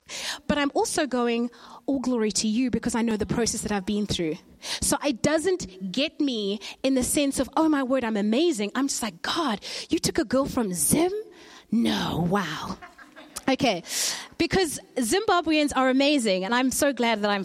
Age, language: 30-49, English